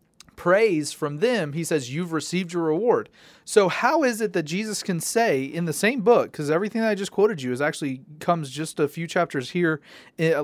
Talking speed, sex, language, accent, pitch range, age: 215 wpm, male, English, American, 145-185 Hz, 30-49